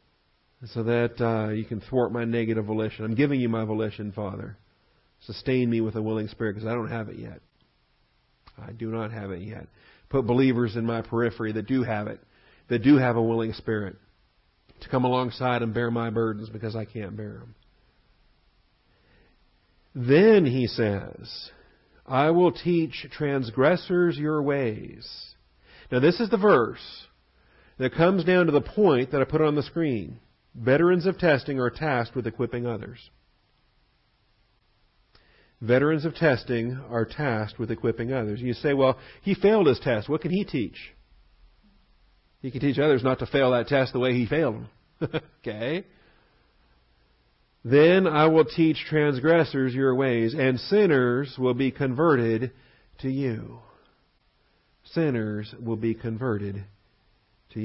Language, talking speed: English, 155 wpm